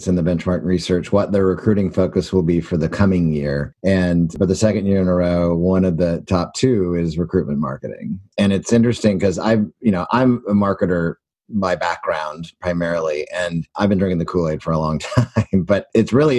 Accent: American